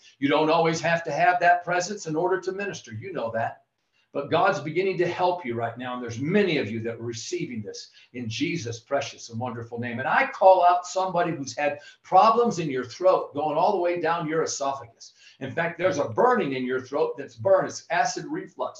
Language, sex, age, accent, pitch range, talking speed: English, male, 50-69, American, 125-175 Hz, 220 wpm